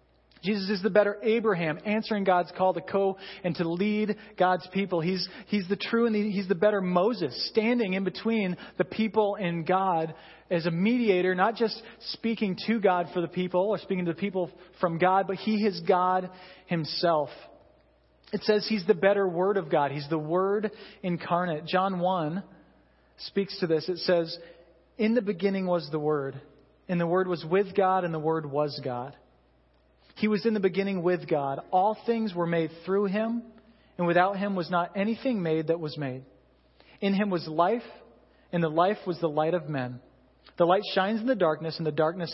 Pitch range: 160-200 Hz